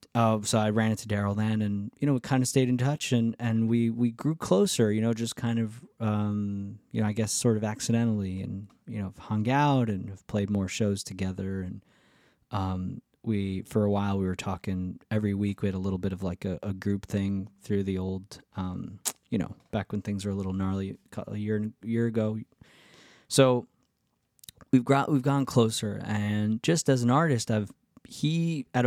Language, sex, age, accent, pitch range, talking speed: English, male, 20-39, American, 100-120 Hz, 205 wpm